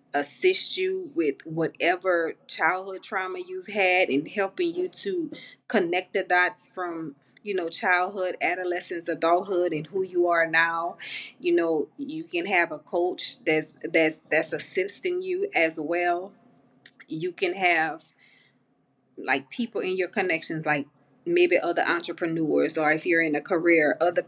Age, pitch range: 30-49, 165-220 Hz